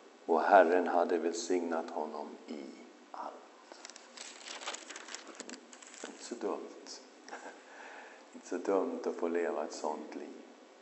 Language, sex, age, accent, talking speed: English, male, 50-69, Swedish, 130 wpm